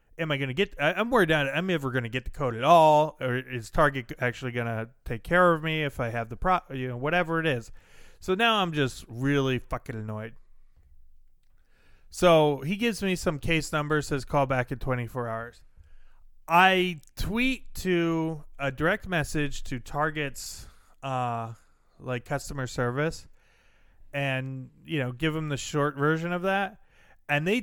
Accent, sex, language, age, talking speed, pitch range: American, male, English, 30-49, 175 wpm, 125-170 Hz